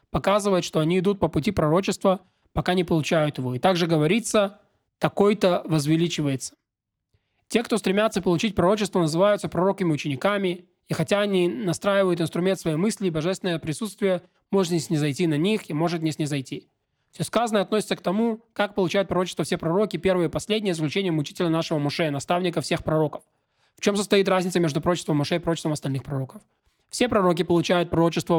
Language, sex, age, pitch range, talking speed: Russian, male, 20-39, 155-195 Hz, 170 wpm